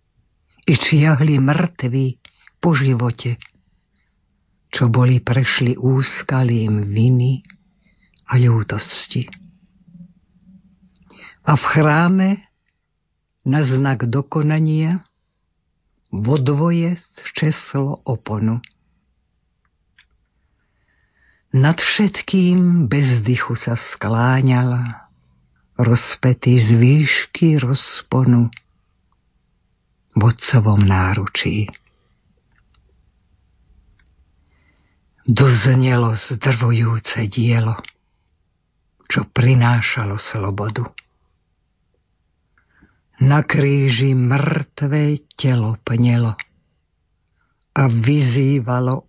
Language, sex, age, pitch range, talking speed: Slovak, female, 60-79, 95-140 Hz, 55 wpm